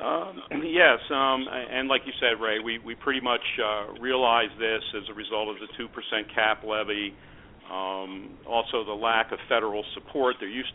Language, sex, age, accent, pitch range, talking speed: English, male, 50-69, American, 105-120 Hz, 180 wpm